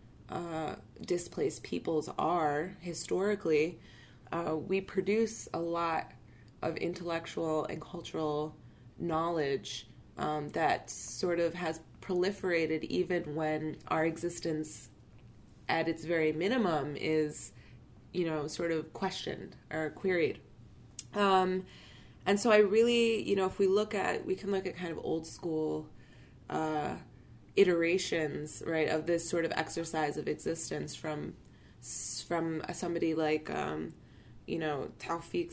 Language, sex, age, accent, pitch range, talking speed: English, female, 20-39, American, 155-185 Hz, 125 wpm